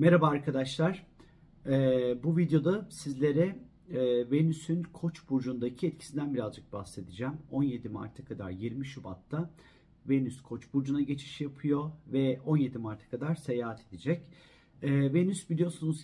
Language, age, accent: Turkish, 40-59, native